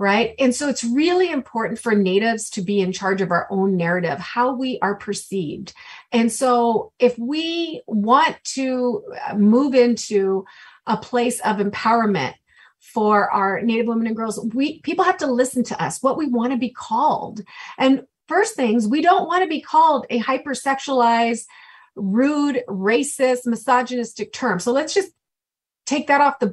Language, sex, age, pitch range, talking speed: English, female, 30-49, 225-295 Hz, 165 wpm